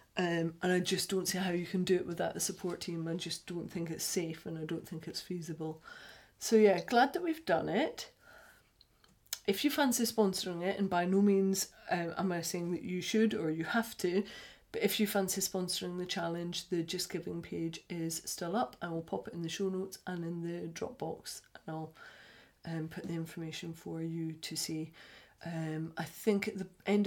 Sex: female